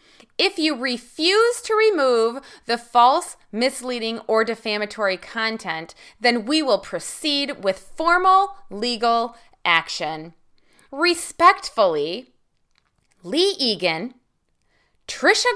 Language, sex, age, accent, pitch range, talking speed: English, female, 20-39, American, 185-295 Hz, 90 wpm